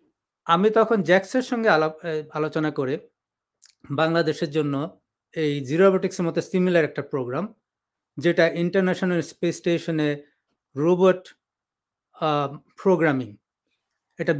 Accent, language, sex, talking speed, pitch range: native, Bengali, male, 90 wpm, 145-180 Hz